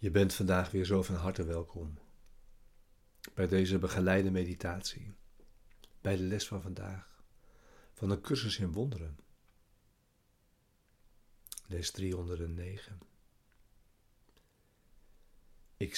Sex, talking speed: male, 95 wpm